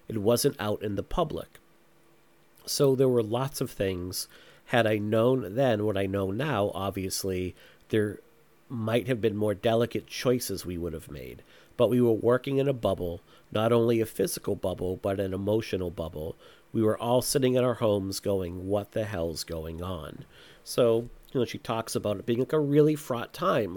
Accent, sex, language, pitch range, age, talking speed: American, male, English, 105-130 Hz, 40-59, 185 wpm